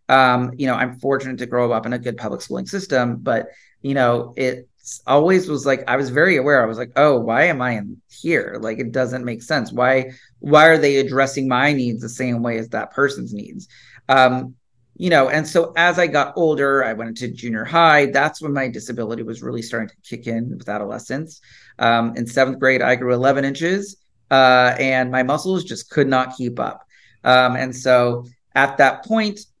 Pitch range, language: 125-145 Hz, English